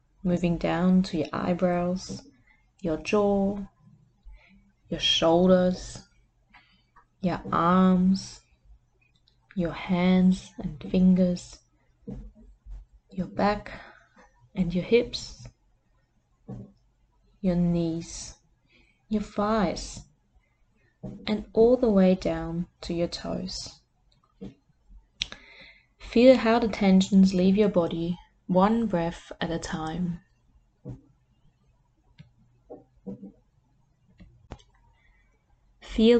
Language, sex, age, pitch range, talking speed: English, female, 20-39, 170-210 Hz, 75 wpm